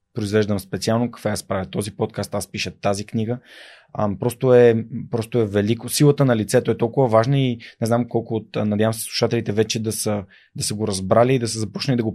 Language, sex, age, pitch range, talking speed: Bulgarian, male, 20-39, 105-120 Hz, 215 wpm